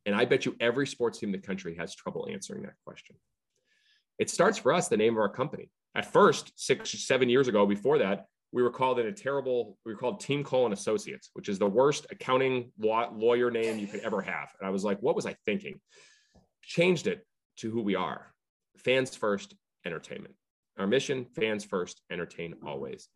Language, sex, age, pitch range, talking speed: English, male, 30-49, 100-150 Hz, 205 wpm